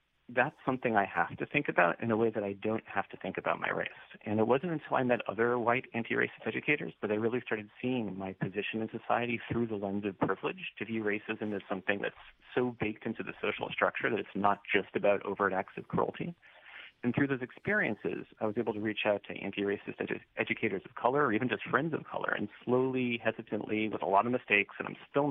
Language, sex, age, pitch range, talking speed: English, male, 40-59, 100-125 Hz, 230 wpm